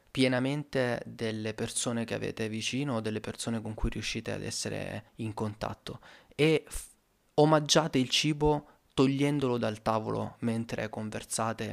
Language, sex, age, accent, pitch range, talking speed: Italian, male, 30-49, native, 110-125 Hz, 130 wpm